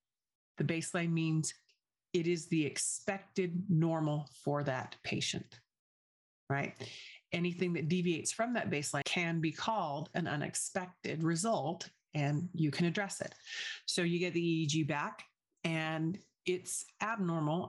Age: 40-59